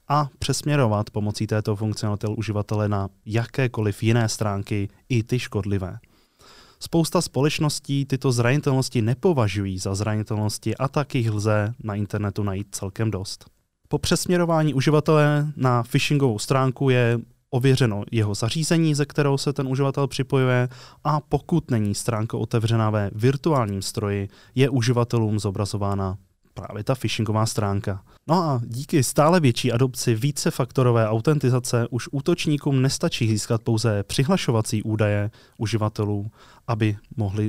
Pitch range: 110-135 Hz